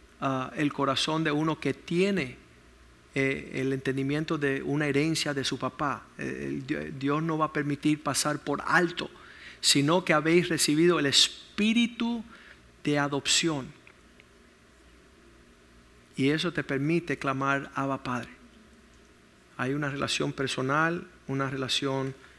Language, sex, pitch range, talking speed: Spanish, male, 130-155 Hz, 120 wpm